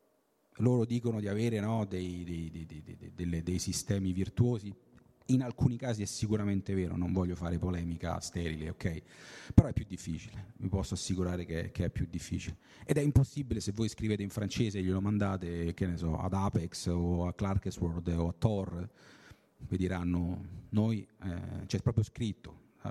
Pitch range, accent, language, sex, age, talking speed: 95-120 Hz, native, Italian, male, 40-59, 180 wpm